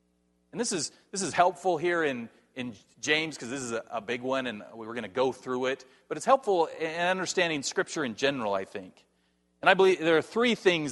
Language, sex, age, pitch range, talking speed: English, male, 40-59, 105-175 Hz, 230 wpm